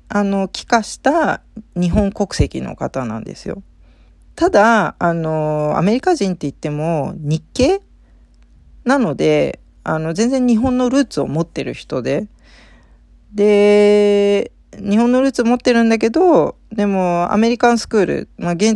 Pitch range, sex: 145-225 Hz, female